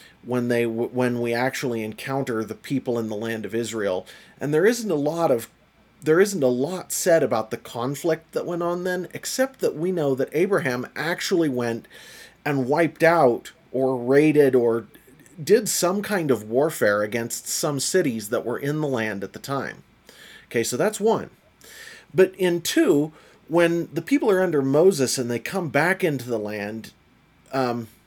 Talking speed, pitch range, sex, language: 175 wpm, 115-170 Hz, male, English